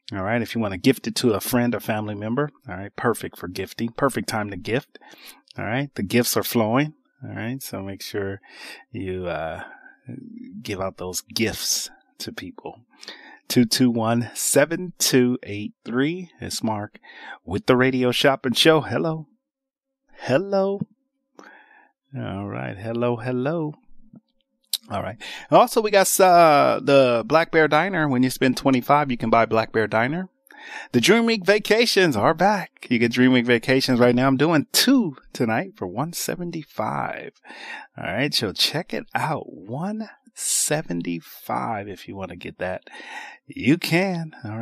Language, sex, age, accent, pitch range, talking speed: English, male, 30-49, American, 115-185 Hz, 160 wpm